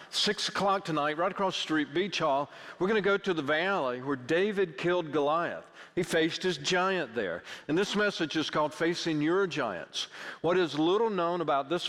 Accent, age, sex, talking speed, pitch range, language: American, 50-69, male, 195 wpm, 155-195 Hz, English